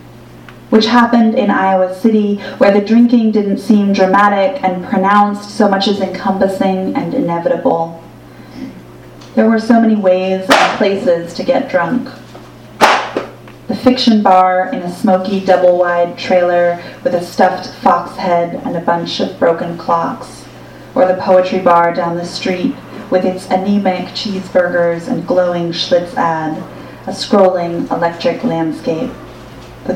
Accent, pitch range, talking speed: American, 175-215 Hz, 135 wpm